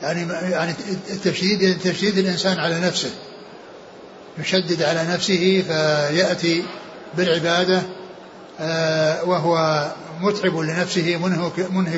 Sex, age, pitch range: male, 60-79, 170-185 Hz